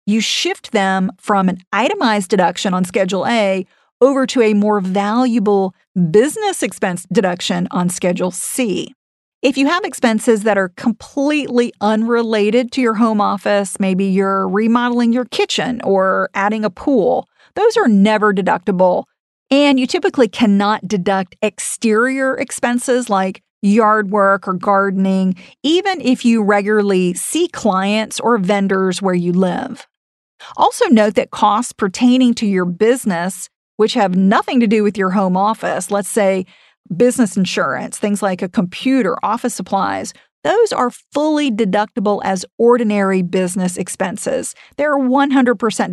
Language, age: English, 40-59